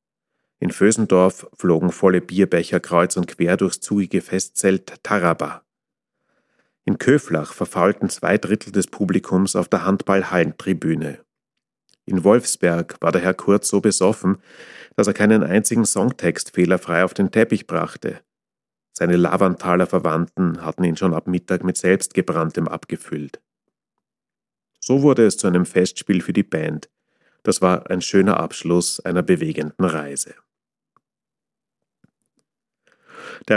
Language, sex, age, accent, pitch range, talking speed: German, male, 40-59, German, 90-100 Hz, 125 wpm